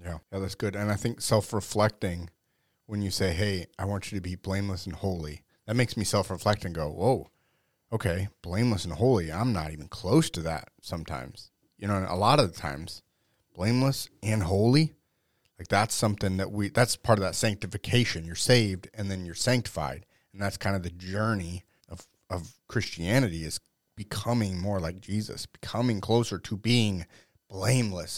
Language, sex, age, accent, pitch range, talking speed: English, male, 30-49, American, 95-115 Hz, 180 wpm